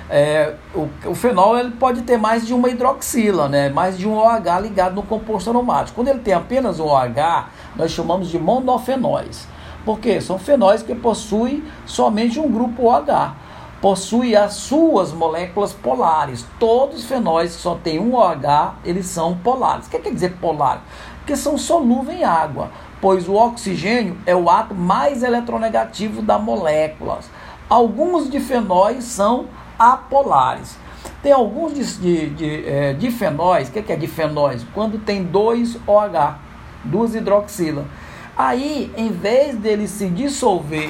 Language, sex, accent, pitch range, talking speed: Portuguese, male, Brazilian, 165-240 Hz, 160 wpm